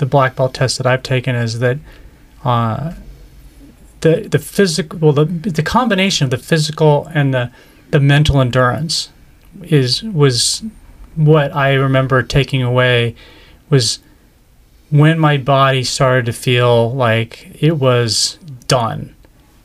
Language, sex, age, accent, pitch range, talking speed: English, male, 30-49, American, 125-155 Hz, 130 wpm